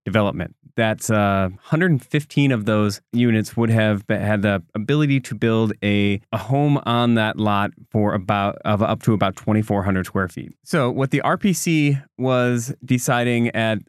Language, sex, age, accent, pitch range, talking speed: English, male, 20-39, American, 105-125 Hz, 155 wpm